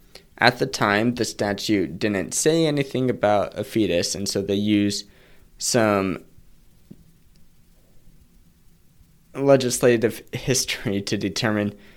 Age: 20-39